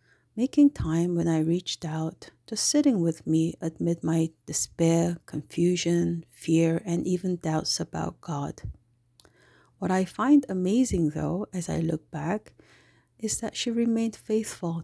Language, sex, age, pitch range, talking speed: English, female, 50-69, 155-195 Hz, 140 wpm